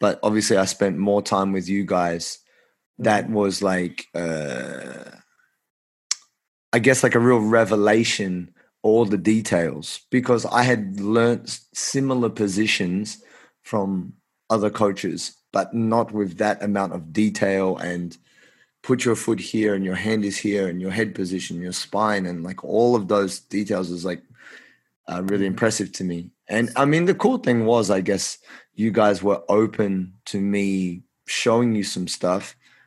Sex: male